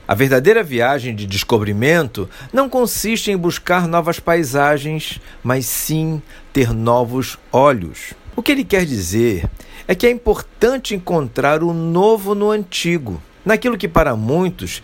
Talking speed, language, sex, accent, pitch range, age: 135 wpm, Portuguese, male, Brazilian, 120-175 Hz, 50-69